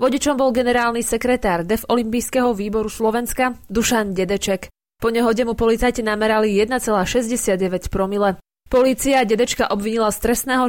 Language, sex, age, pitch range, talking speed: Slovak, female, 20-39, 205-250 Hz, 125 wpm